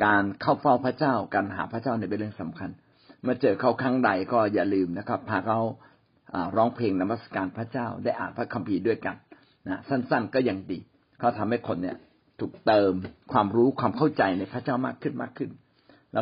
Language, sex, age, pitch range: Thai, male, 60-79, 105-135 Hz